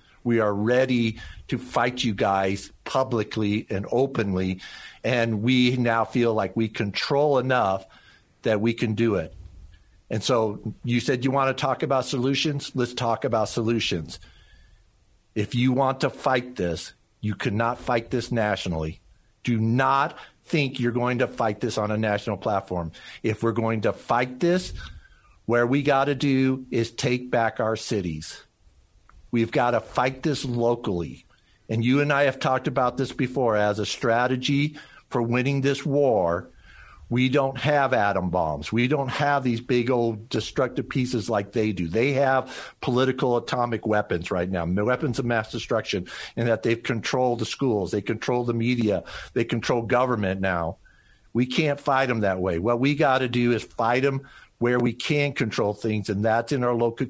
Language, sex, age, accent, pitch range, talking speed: English, male, 50-69, American, 105-130 Hz, 170 wpm